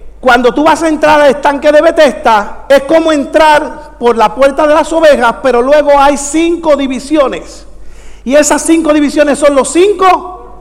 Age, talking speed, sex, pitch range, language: 50-69, 170 wpm, male, 265-310 Hz, English